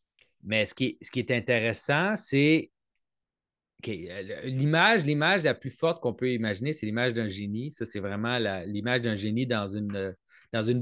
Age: 30-49